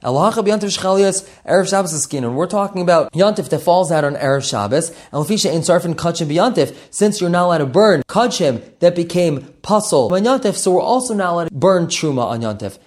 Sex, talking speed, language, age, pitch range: male, 150 wpm, English, 20-39, 145-195 Hz